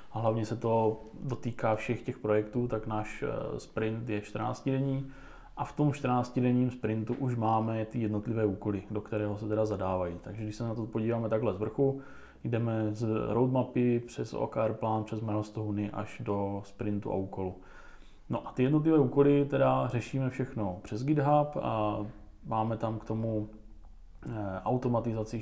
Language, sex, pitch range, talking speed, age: Czech, male, 105-115 Hz, 155 wpm, 20-39